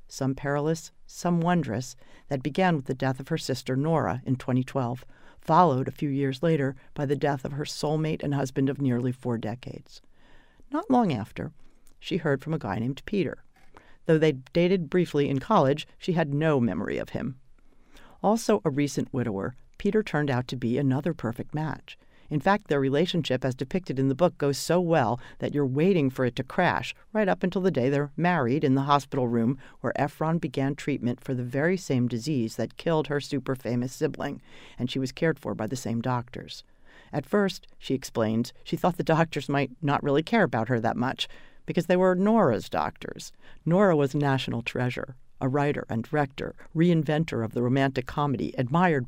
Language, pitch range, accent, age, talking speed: English, 130-160 Hz, American, 50-69, 190 wpm